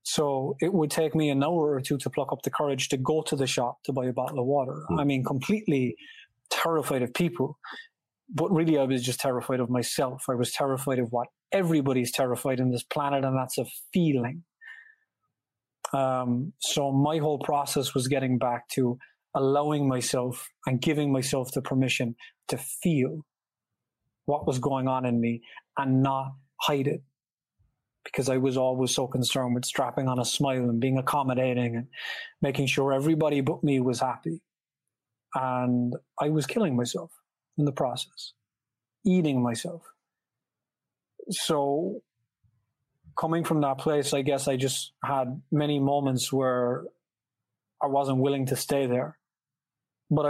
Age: 30-49